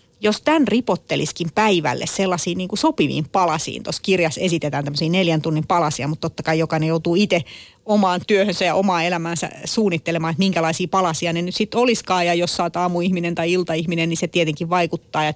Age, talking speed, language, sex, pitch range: 30-49, 175 wpm, Finnish, female, 160-195 Hz